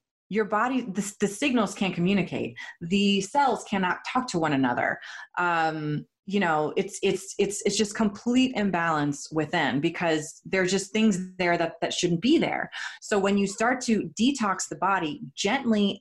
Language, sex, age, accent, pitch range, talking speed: English, female, 30-49, American, 170-225 Hz, 165 wpm